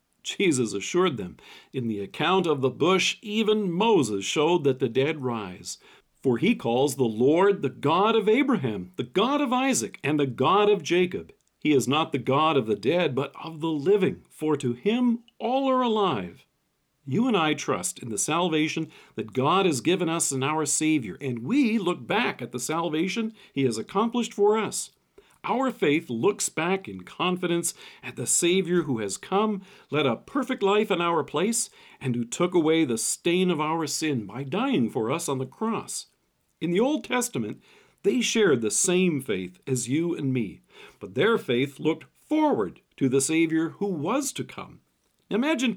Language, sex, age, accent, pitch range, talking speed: English, male, 50-69, American, 135-210 Hz, 185 wpm